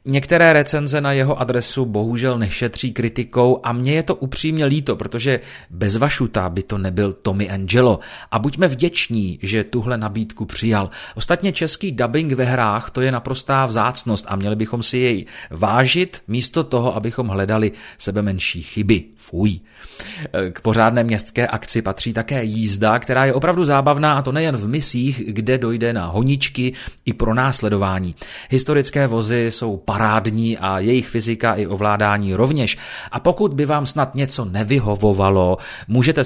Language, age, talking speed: Czech, 30-49, 150 wpm